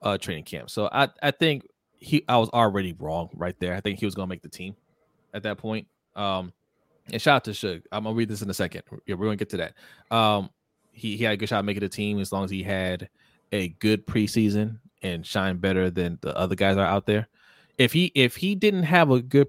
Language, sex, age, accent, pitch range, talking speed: English, male, 20-39, American, 95-115 Hz, 250 wpm